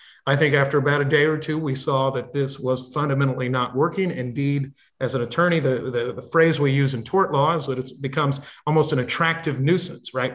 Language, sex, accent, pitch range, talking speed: English, male, American, 130-160 Hz, 220 wpm